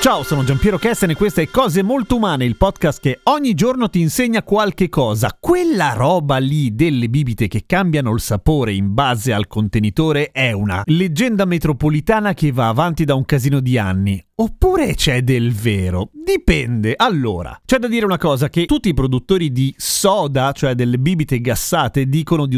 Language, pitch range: Italian, 130-190 Hz